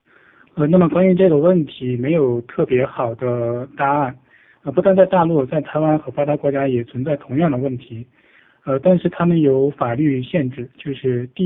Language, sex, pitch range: Chinese, male, 125-155 Hz